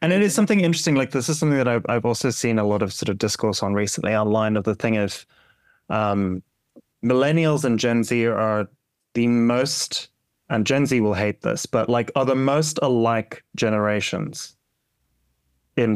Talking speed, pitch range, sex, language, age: 180 wpm, 105-130 Hz, male, English, 30-49